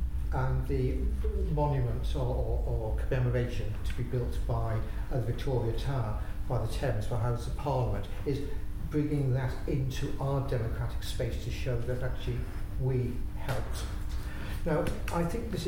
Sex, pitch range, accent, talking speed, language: male, 100-140 Hz, British, 155 wpm, English